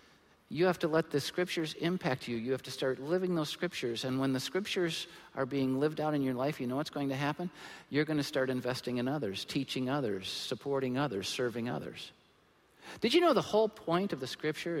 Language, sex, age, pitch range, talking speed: English, male, 50-69, 120-165 Hz, 220 wpm